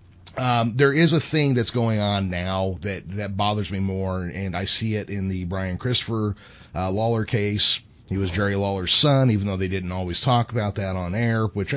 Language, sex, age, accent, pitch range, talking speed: English, male, 30-49, American, 95-115 Hz, 210 wpm